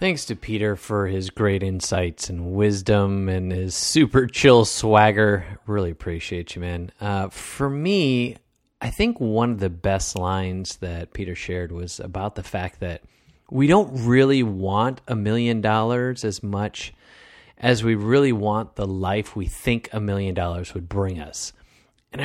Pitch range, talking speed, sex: 95-125 Hz, 160 wpm, male